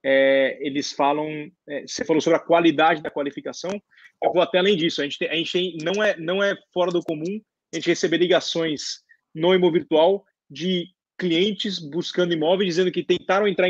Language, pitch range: Portuguese, 155-185 Hz